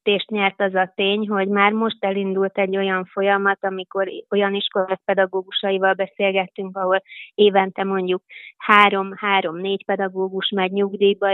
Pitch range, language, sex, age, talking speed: 185-205 Hz, Hungarian, female, 20-39, 145 wpm